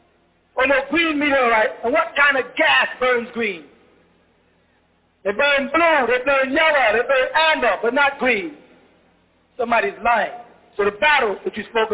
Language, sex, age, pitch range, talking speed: English, male, 40-59, 215-270 Hz, 155 wpm